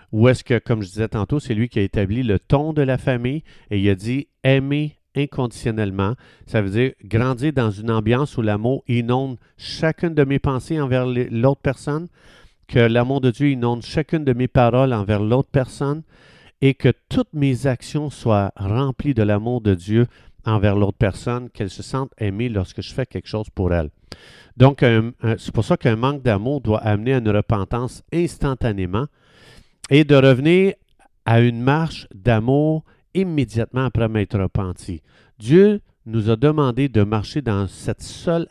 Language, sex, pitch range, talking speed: French, male, 110-140 Hz, 170 wpm